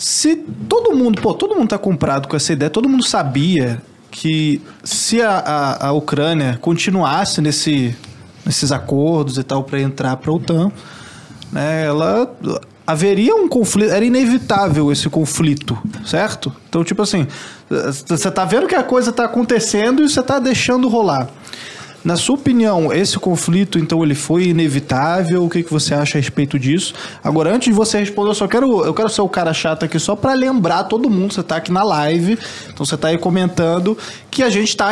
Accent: Brazilian